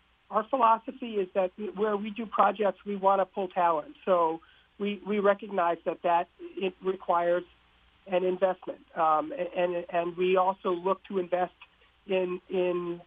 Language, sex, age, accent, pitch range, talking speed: English, male, 50-69, American, 170-200 Hz, 150 wpm